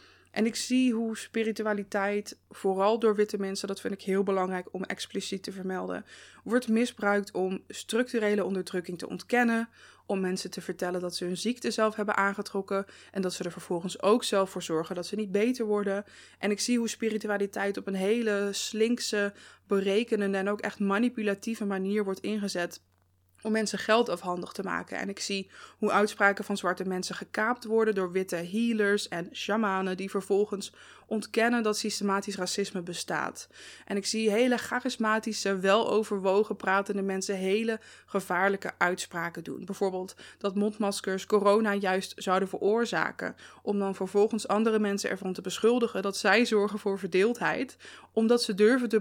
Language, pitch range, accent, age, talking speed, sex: Dutch, 190-215 Hz, Dutch, 20-39, 160 wpm, female